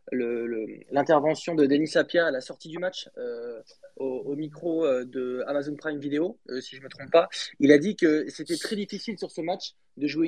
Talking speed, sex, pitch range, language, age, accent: 230 wpm, male, 150-210 Hz, French, 20-39, French